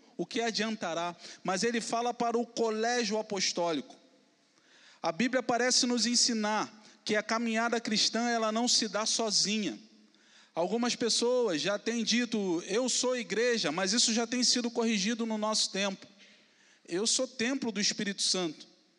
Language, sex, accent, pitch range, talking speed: Portuguese, male, Brazilian, 205-245 Hz, 150 wpm